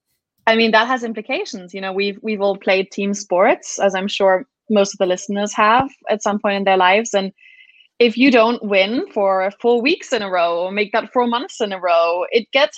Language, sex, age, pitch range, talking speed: English, female, 20-39, 190-220 Hz, 225 wpm